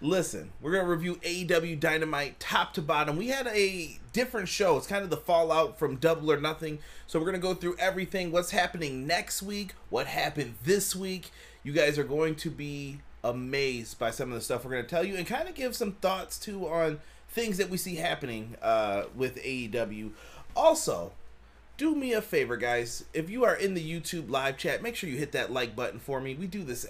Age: 30-49